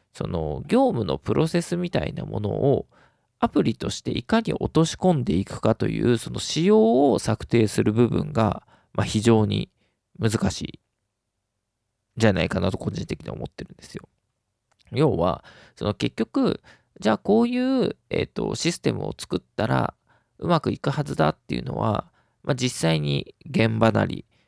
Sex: male